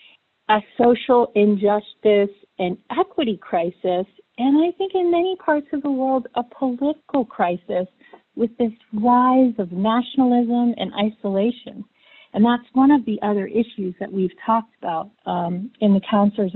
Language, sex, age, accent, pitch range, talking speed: English, female, 50-69, American, 205-265 Hz, 145 wpm